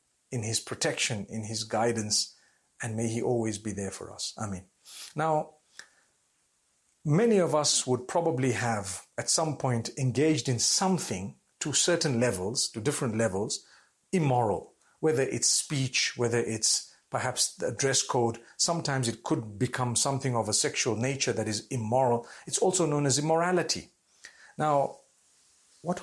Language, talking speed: English, 150 wpm